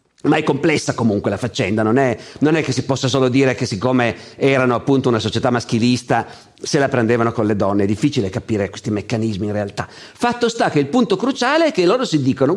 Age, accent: 50-69, native